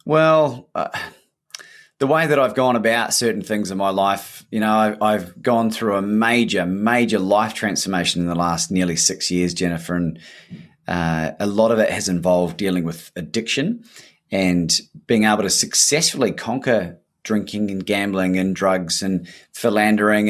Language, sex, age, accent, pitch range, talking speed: English, male, 30-49, Australian, 95-115 Hz, 160 wpm